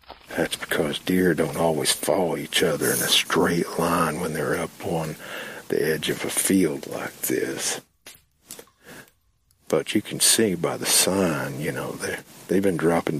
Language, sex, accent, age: English, male, American, 60-79